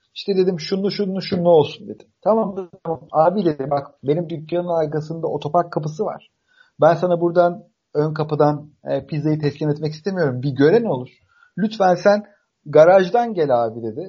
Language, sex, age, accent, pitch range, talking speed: Turkish, male, 40-59, native, 145-185 Hz, 165 wpm